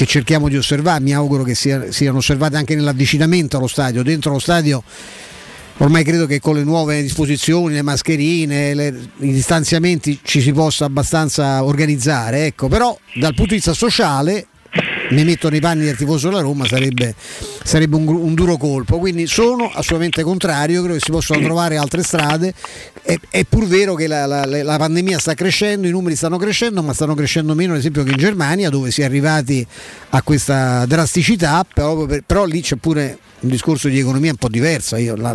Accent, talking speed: native, 185 wpm